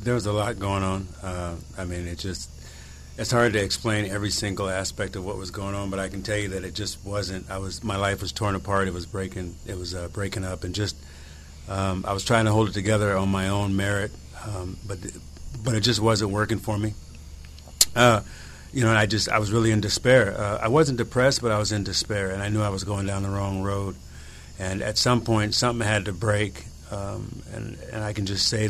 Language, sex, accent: English, male, American